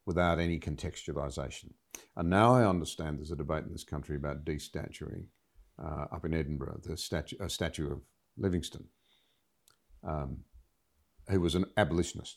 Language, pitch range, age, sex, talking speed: English, 80-95 Hz, 50-69, male, 145 wpm